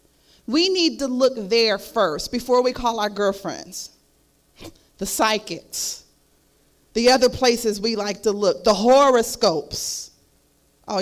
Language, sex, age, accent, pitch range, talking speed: English, female, 40-59, American, 195-290 Hz, 125 wpm